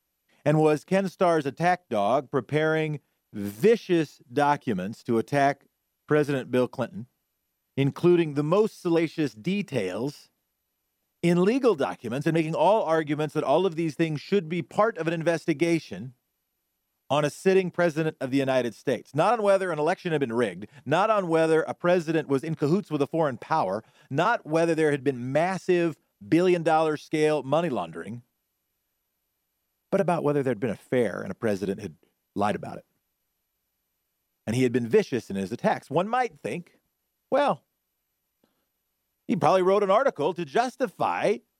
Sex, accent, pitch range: male, American, 145-190 Hz